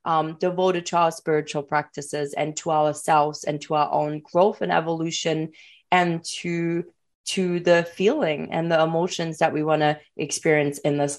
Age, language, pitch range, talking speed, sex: 20-39, English, 155-190 Hz, 165 wpm, female